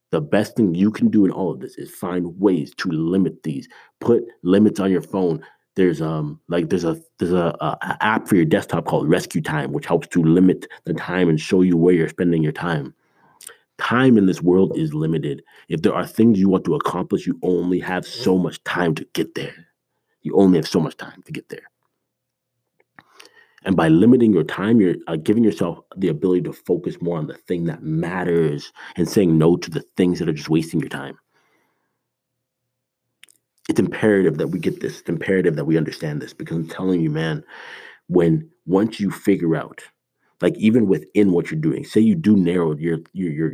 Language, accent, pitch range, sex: English, American, 80-95 Hz, male